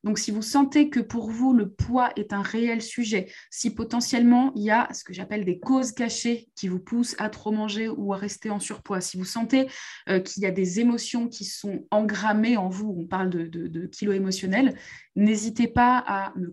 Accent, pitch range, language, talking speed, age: French, 190-240 Hz, French, 220 wpm, 20-39